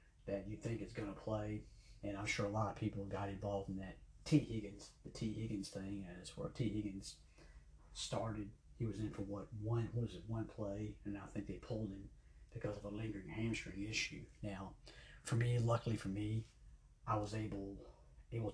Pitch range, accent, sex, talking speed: 100-110 Hz, American, male, 190 wpm